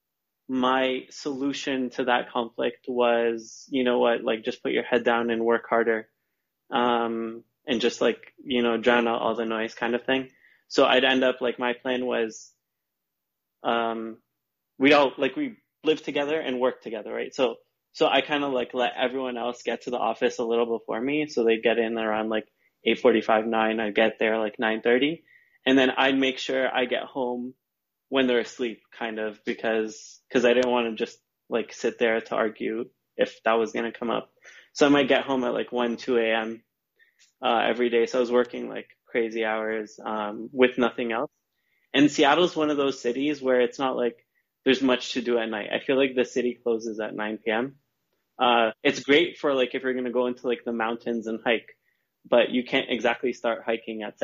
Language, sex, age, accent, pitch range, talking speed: English, male, 20-39, American, 115-130 Hz, 210 wpm